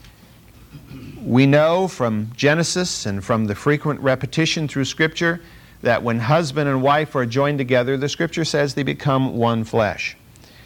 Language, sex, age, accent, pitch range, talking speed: English, male, 50-69, American, 115-160 Hz, 145 wpm